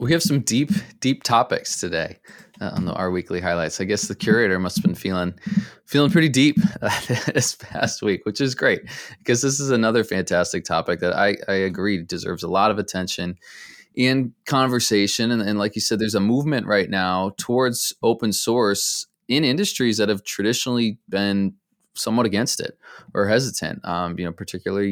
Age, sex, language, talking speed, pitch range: 20-39, male, English, 185 wpm, 100-125 Hz